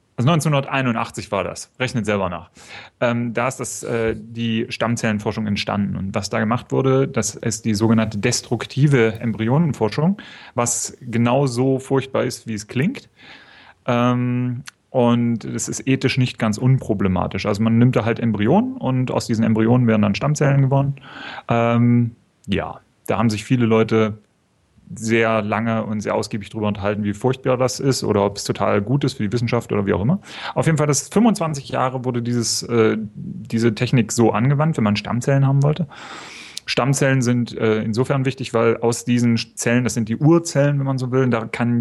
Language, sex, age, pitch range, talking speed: English, male, 30-49, 110-130 Hz, 175 wpm